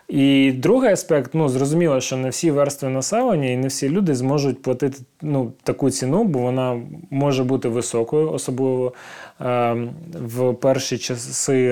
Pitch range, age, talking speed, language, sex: 125-150 Hz, 20-39, 140 wpm, Ukrainian, male